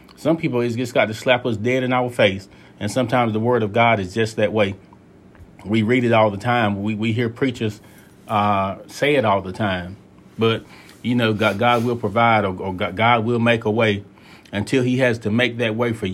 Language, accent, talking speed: English, American, 225 wpm